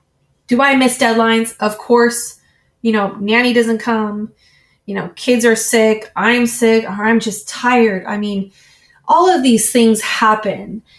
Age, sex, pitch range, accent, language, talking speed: 20-39, female, 195-230 Hz, American, English, 155 wpm